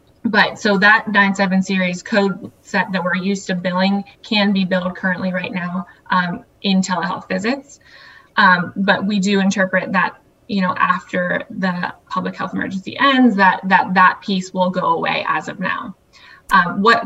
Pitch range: 185-200 Hz